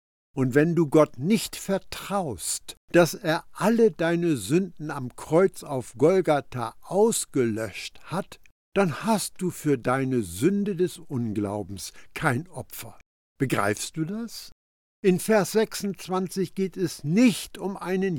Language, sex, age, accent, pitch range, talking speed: German, male, 60-79, German, 130-195 Hz, 125 wpm